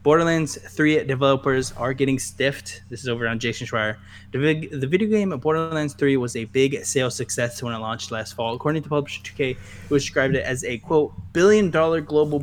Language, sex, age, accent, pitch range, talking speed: English, male, 10-29, American, 115-145 Hz, 210 wpm